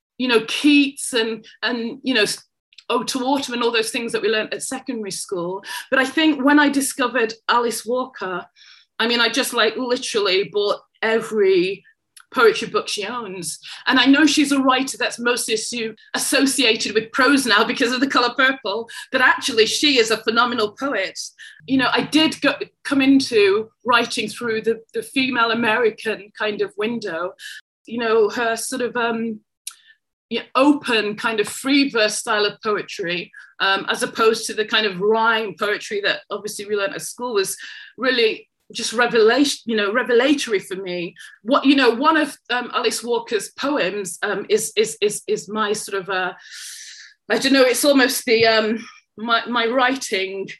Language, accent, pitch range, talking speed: English, British, 220-270 Hz, 175 wpm